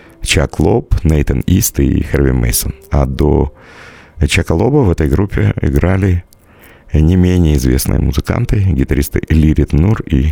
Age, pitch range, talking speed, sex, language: 50-69, 80-105 Hz, 135 wpm, male, Russian